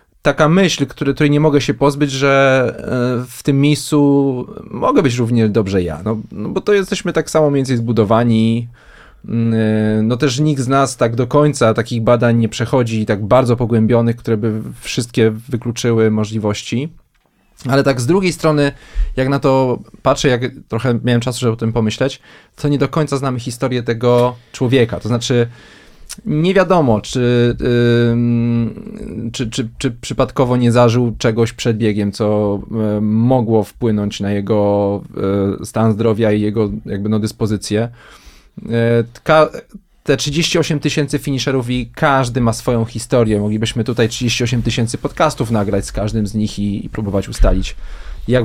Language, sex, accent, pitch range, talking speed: Polish, male, native, 110-135 Hz, 150 wpm